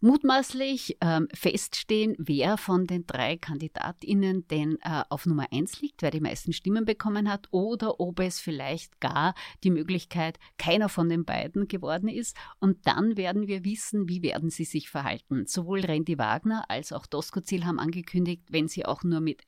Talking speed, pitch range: 175 wpm, 155-200 Hz